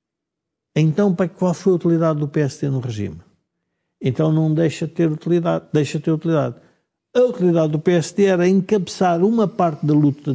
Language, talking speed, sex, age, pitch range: Portuguese, 170 wpm, male, 50-69, 140-175 Hz